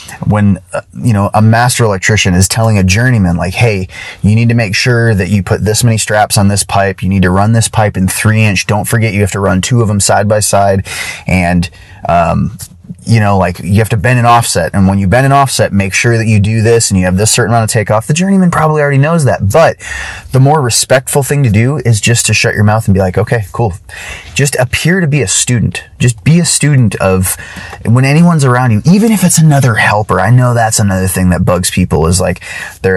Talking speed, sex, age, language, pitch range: 240 wpm, male, 30-49, English, 95-135 Hz